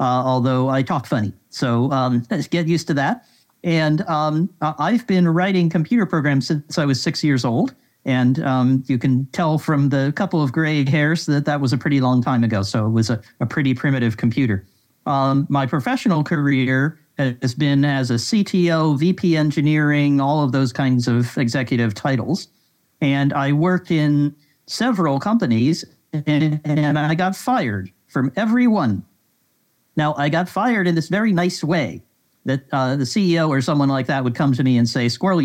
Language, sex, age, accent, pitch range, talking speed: English, male, 50-69, American, 130-170 Hz, 185 wpm